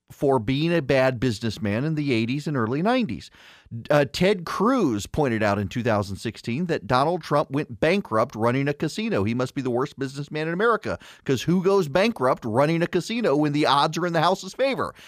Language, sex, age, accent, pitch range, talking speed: English, male, 40-59, American, 155-245 Hz, 195 wpm